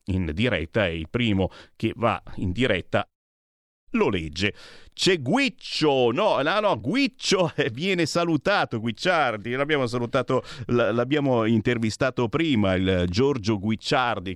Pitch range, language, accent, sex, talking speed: 110-145 Hz, Italian, native, male, 115 wpm